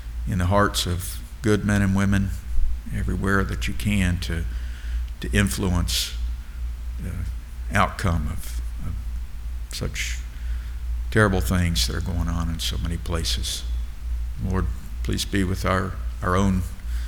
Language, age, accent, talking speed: English, 60-79, American, 130 wpm